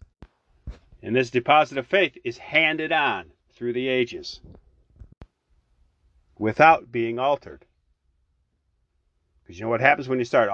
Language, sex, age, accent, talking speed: English, male, 40-59, American, 125 wpm